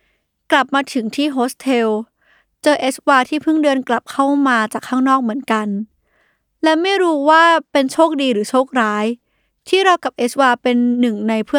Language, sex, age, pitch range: Thai, female, 20-39, 230-295 Hz